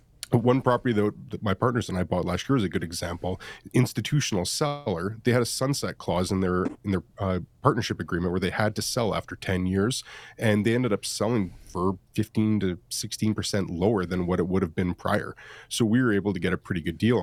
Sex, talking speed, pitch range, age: male, 220 wpm, 95-120 Hz, 30-49